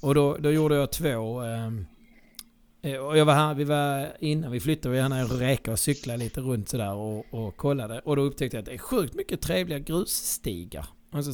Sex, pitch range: male, 110-145 Hz